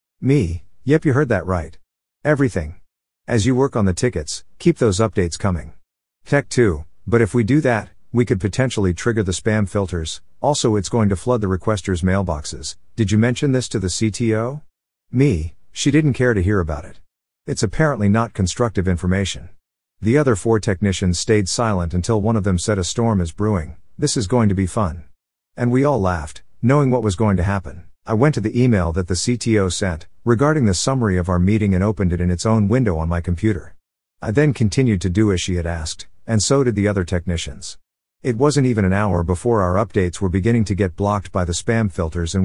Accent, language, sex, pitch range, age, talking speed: American, English, male, 90-115 Hz, 50-69, 210 wpm